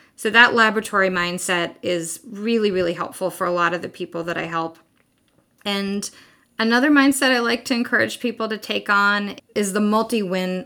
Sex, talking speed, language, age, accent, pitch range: female, 175 wpm, English, 20-39, American, 185-225 Hz